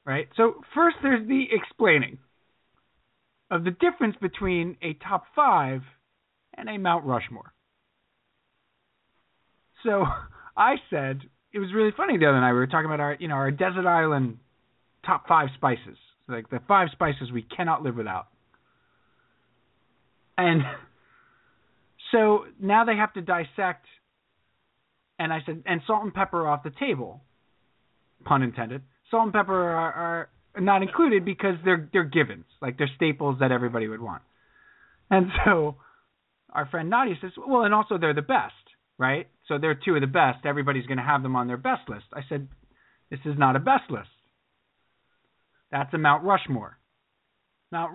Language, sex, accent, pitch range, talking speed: English, male, American, 130-185 Hz, 160 wpm